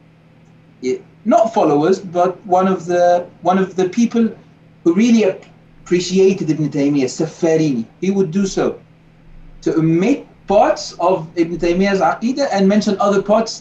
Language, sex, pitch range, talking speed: English, male, 160-195 Hz, 140 wpm